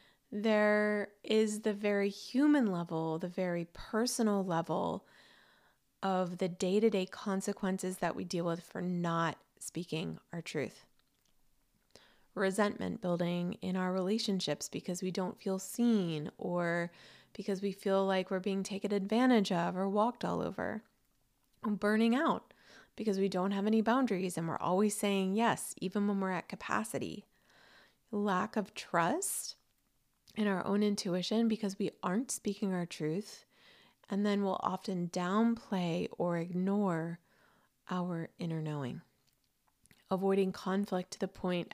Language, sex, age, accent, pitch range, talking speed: English, female, 20-39, American, 180-210 Hz, 135 wpm